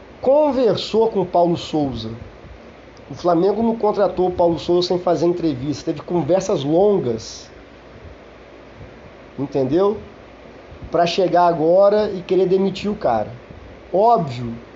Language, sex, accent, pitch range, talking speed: Portuguese, male, Brazilian, 165-195 Hz, 115 wpm